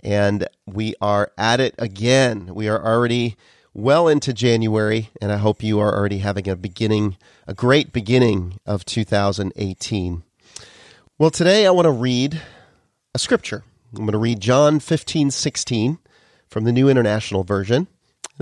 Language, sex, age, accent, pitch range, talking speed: English, male, 40-59, American, 105-145 Hz, 155 wpm